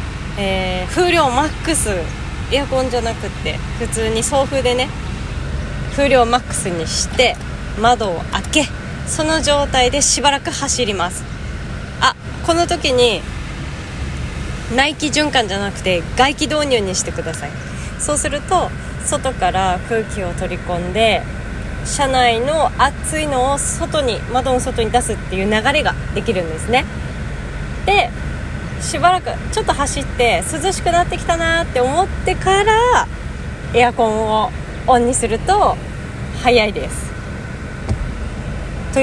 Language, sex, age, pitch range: Japanese, female, 20-39, 225-295 Hz